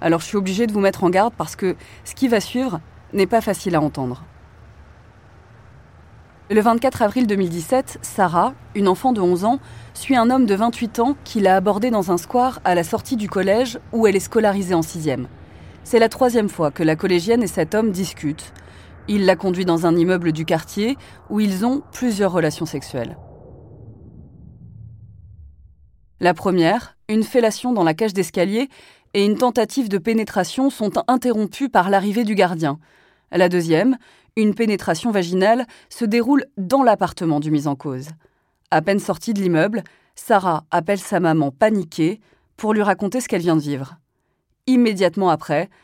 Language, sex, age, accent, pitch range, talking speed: French, female, 20-39, French, 155-220 Hz, 170 wpm